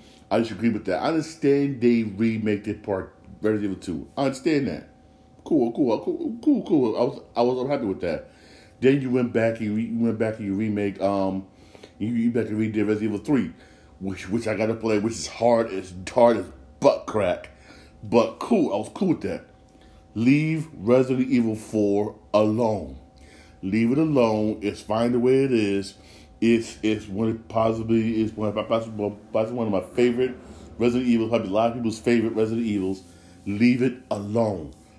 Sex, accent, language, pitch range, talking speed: male, American, English, 105-135 Hz, 190 wpm